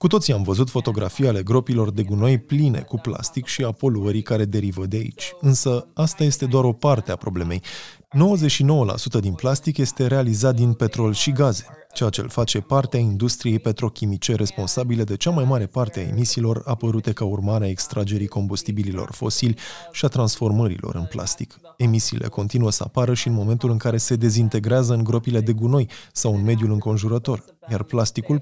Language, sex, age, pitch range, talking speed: Romanian, male, 20-39, 110-130 Hz, 175 wpm